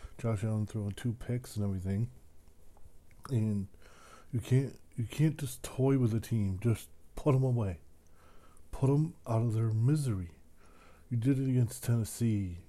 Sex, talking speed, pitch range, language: male, 150 wpm, 95-120 Hz, English